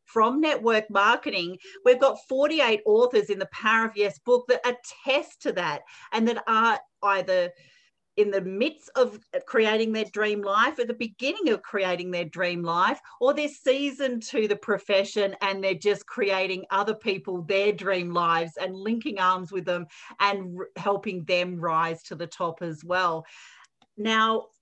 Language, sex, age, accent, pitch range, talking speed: English, female, 40-59, Australian, 185-255 Hz, 165 wpm